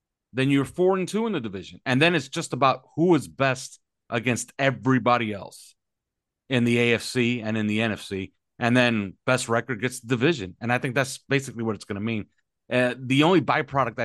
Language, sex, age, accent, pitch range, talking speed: English, male, 40-59, American, 100-130 Hz, 190 wpm